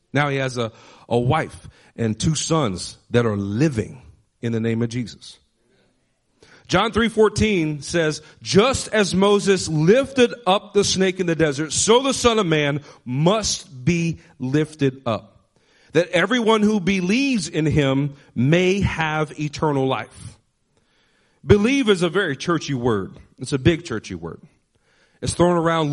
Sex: male